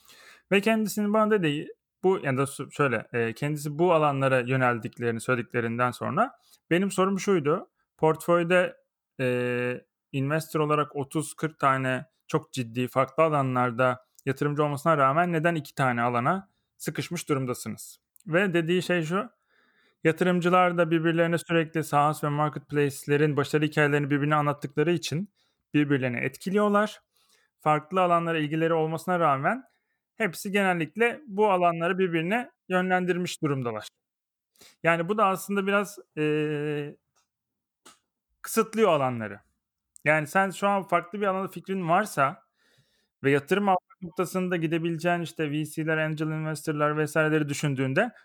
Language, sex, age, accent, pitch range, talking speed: Turkish, male, 30-49, native, 145-190 Hz, 115 wpm